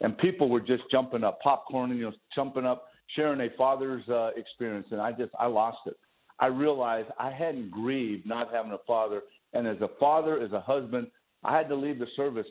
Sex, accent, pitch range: male, American, 115-145 Hz